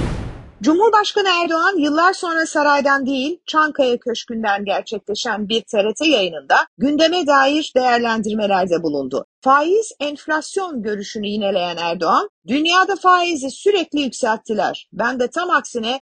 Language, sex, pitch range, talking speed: Turkish, female, 235-315 Hz, 110 wpm